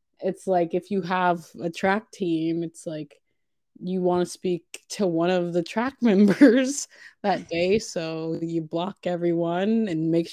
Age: 20-39